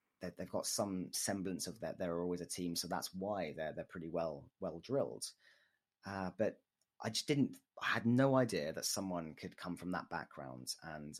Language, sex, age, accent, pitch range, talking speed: English, male, 30-49, British, 90-110 Hz, 200 wpm